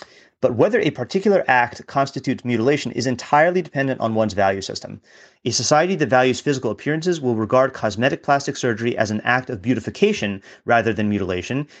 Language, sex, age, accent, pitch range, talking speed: English, male, 30-49, American, 115-150 Hz, 170 wpm